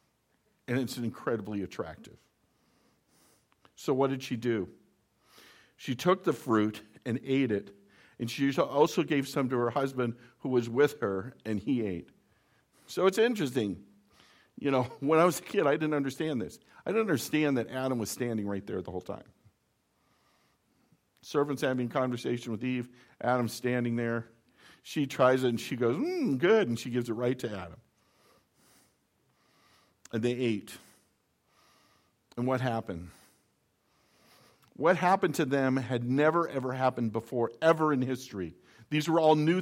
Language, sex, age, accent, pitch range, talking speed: English, male, 50-69, American, 120-160 Hz, 155 wpm